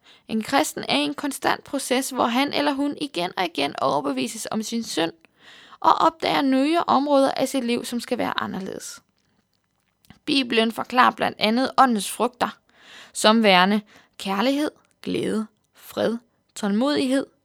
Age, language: 20-39, Danish